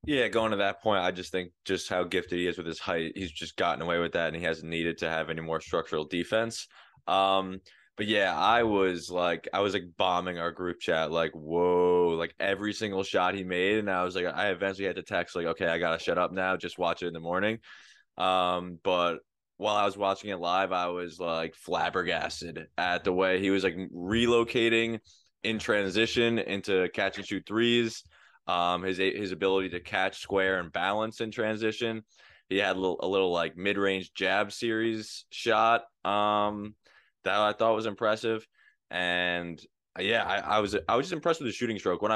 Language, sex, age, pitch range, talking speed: English, male, 20-39, 90-110 Hz, 200 wpm